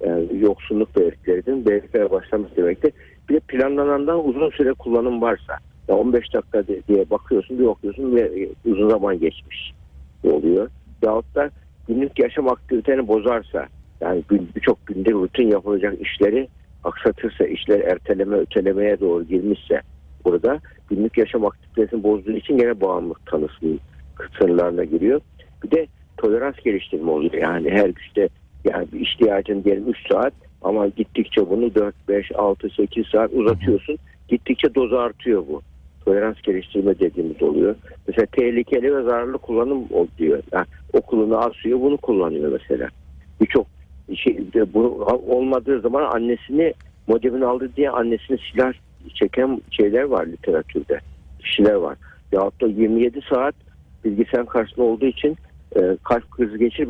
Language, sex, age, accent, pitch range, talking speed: Turkish, male, 50-69, native, 90-130 Hz, 130 wpm